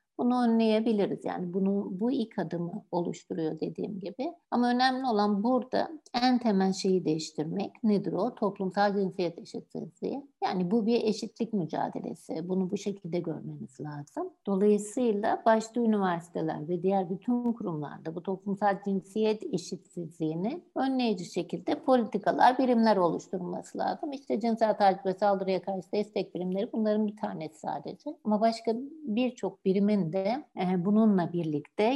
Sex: female